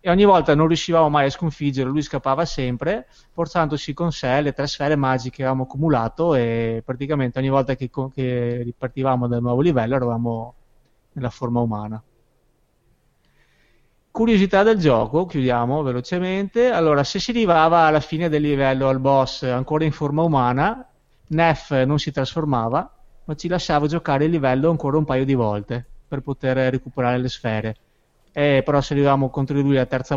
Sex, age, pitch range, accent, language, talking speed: male, 30-49, 120-155 Hz, native, Italian, 165 wpm